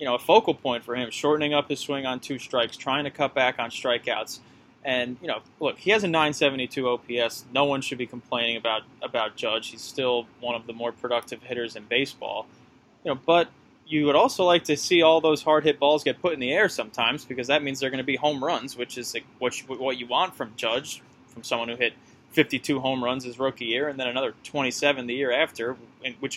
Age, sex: 20-39, male